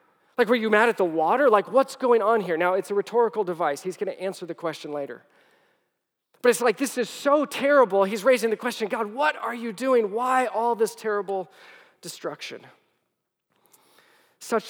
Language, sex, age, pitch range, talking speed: English, male, 40-59, 160-225 Hz, 190 wpm